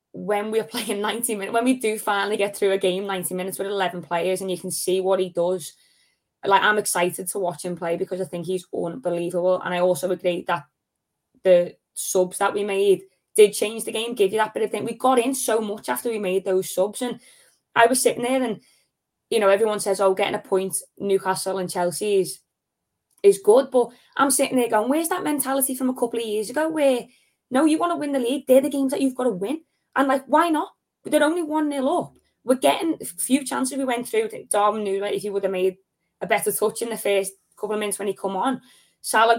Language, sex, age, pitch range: English, female, 20-39, 195-265 Hz